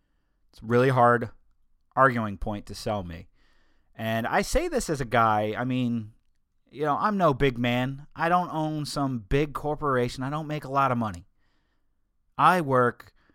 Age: 30-49